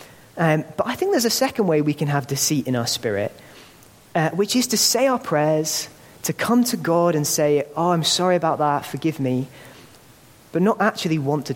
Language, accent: English, British